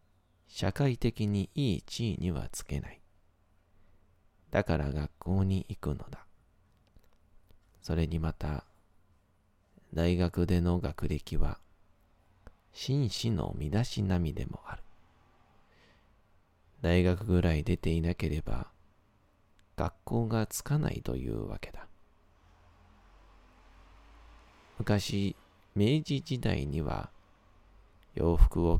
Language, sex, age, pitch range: Japanese, male, 40-59, 85-100 Hz